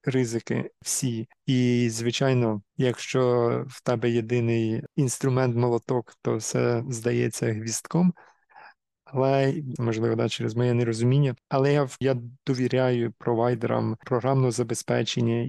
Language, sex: Ukrainian, male